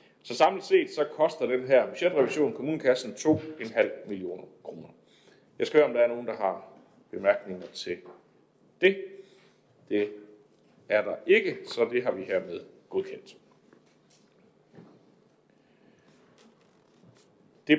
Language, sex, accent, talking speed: Danish, male, native, 120 wpm